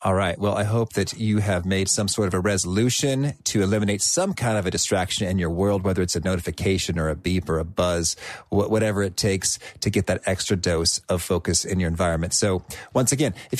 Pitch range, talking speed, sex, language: 100-135 Hz, 225 wpm, male, English